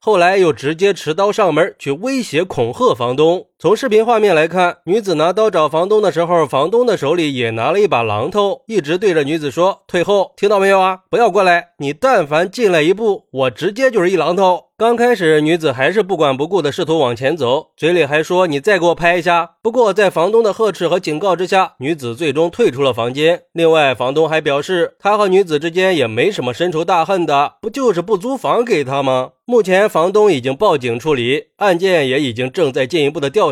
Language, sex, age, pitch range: Chinese, male, 30-49, 150-210 Hz